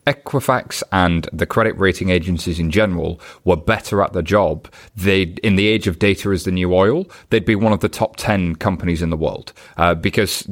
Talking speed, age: 205 wpm, 30-49